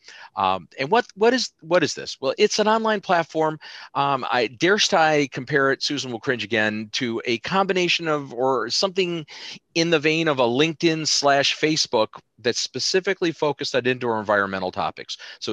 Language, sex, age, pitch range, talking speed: English, male, 40-59, 110-155 Hz, 175 wpm